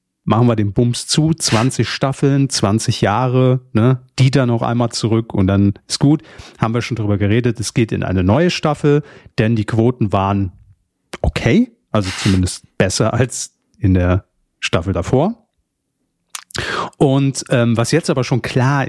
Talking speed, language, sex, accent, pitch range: 160 wpm, German, male, German, 105-135 Hz